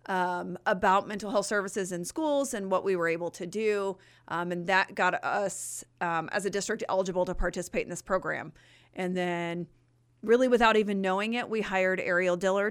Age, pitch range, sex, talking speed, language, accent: 30-49, 175-205 Hz, female, 190 wpm, English, American